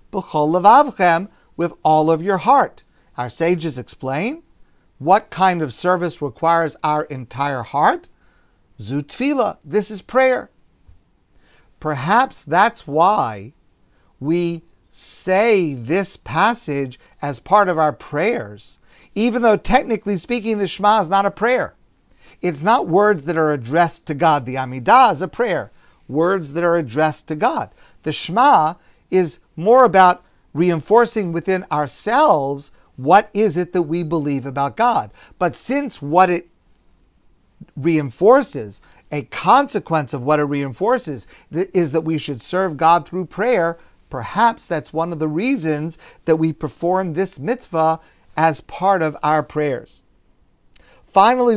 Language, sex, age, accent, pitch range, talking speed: English, male, 50-69, American, 145-195 Hz, 130 wpm